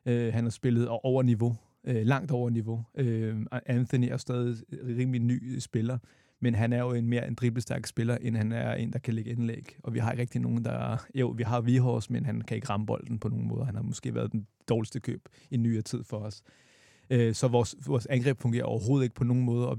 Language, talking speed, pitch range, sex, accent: Danish, 235 wpm, 115-130 Hz, male, native